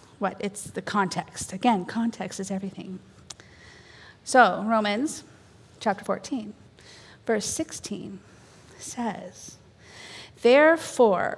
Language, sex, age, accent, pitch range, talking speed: English, female, 40-59, American, 190-225 Hz, 85 wpm